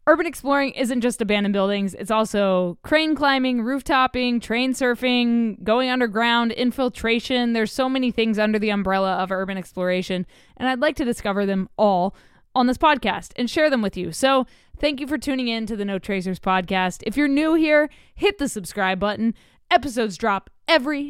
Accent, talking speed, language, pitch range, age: American, 180 wpm, English, 190-255 Hz, 20-39